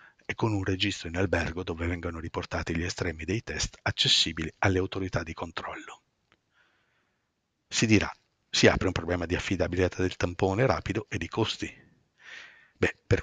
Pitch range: 85-105 Hz